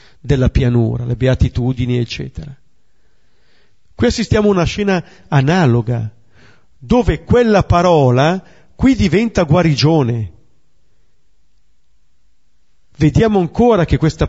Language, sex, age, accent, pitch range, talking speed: Italian, male, 50-69, native, 120-170 Hz, 90 wpm